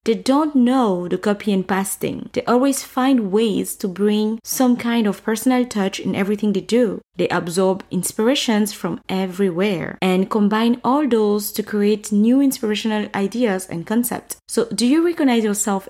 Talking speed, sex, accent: 160 wpm, female, French